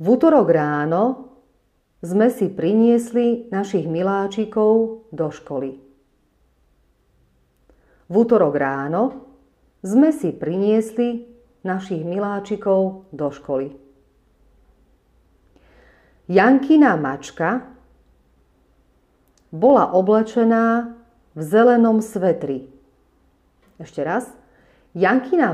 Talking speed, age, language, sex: 70 wpm, 40-59, Slovak, female